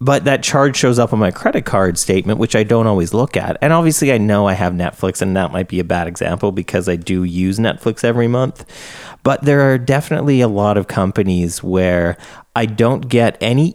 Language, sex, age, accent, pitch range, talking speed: English, male, 30-49, American, 95-125 Hz, 220 wpm